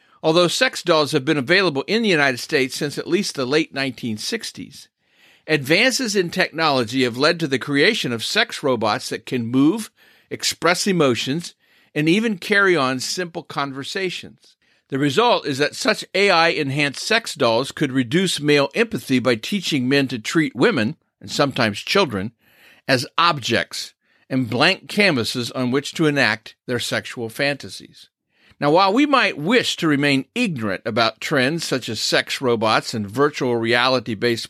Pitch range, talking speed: 130-175 Hz, 155 wpm